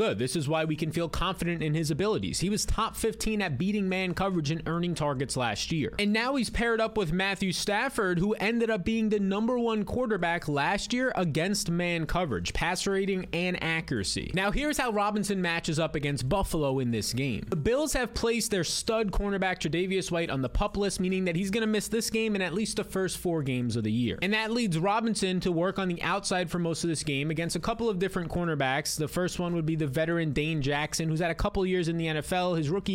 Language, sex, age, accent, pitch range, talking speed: English, male, 20-39, American, 160-215 Hz, 235 wpm